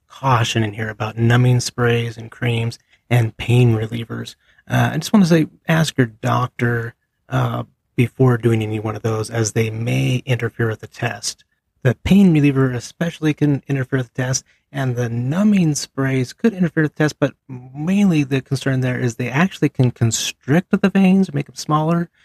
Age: 30-49